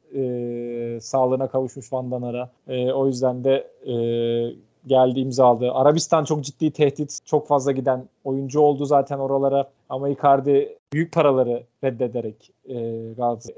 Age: 40-59